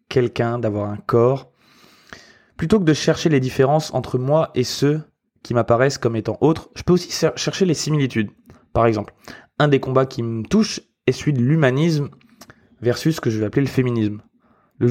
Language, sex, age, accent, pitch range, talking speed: French, male, 20-39, French, 115-145 Hz, 185 wpm